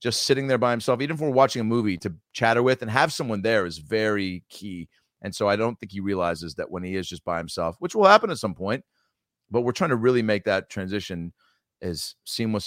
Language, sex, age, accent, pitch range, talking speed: English, male, 30-49, American, 85-110 Hz, 240 wpm